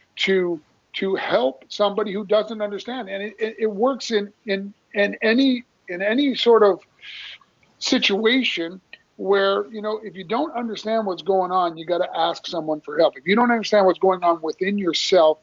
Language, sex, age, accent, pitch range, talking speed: English, male, 50-69, American, 180-220 Hz, 180 wpm